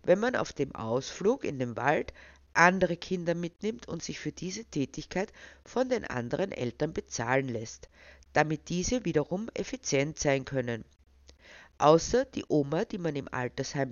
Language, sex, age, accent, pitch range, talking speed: German, female, 50-69, Austrian, 135-185 Hz, 150 wpm